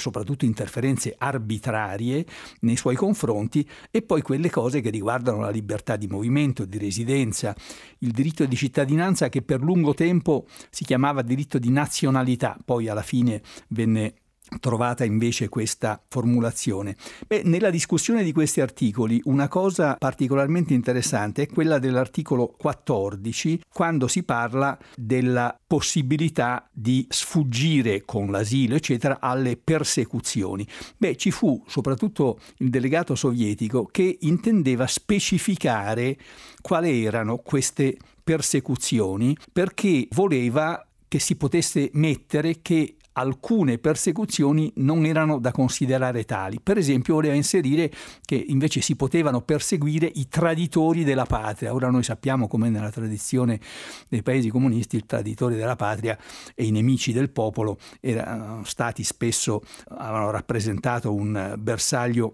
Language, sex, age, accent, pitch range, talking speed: Italian, male, 60-79, native, 115-155 Hz, 125 wpm